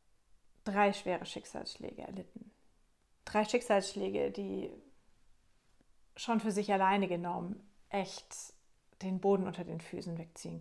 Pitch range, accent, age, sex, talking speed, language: 180-215 Hz, German, 30-49, female, 105 wpm, German